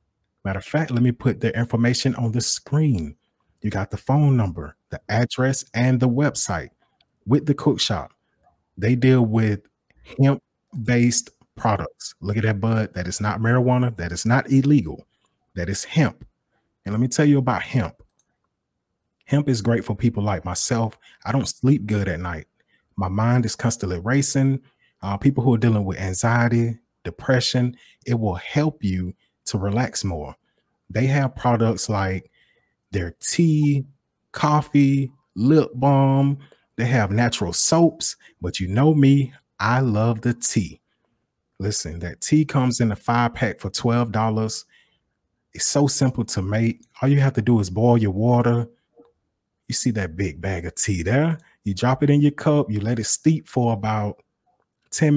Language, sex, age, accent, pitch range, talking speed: English, male, 30-49, American, 100-135 Hz, 165 wpm